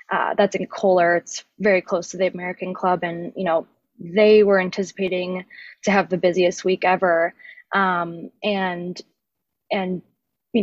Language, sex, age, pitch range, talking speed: English, female, 20-39, 180-200 Hz, 150 wpm